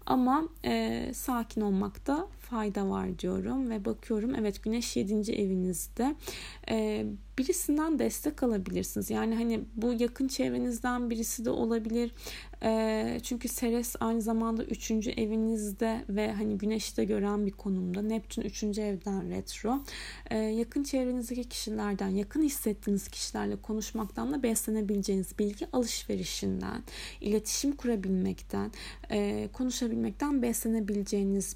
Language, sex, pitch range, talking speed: Turkish, female, 200-240 Hz, 110 wpm